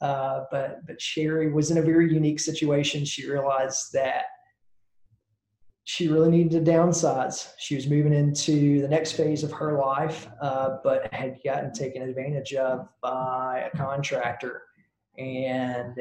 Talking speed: 145 wpm